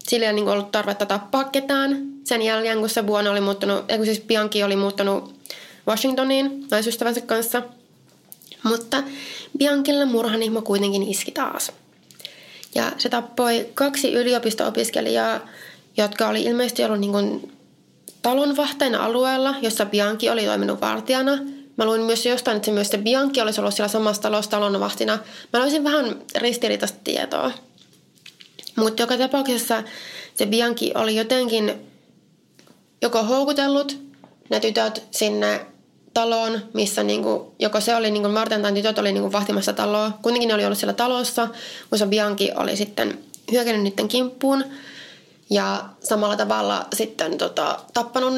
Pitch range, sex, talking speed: 210-255 Hz, female, 130 wpm